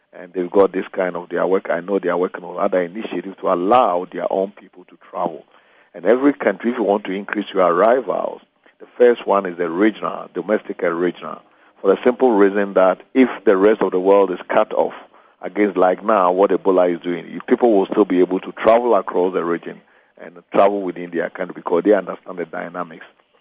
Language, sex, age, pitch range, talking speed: English, male, 50-69, 90-100 Hz, 215 wpm